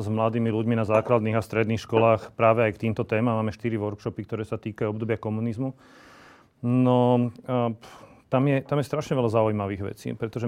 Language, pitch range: Slovak, 110-120 Hz